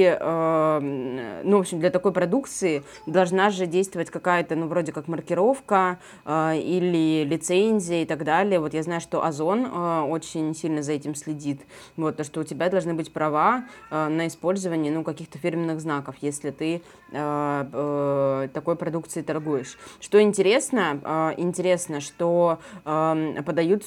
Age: 20-39